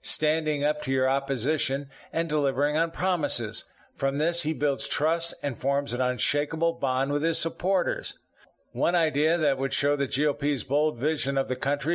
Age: 50-69